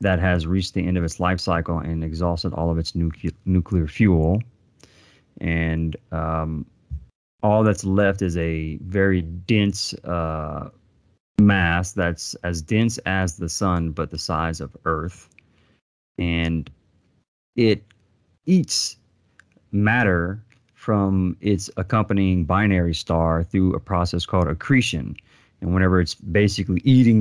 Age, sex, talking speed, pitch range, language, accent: 30-49, male, 125 wpm, 85-100 Hz, English, American